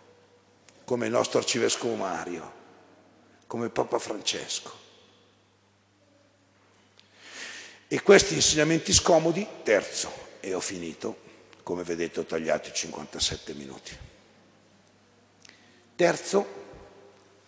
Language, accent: Italian, native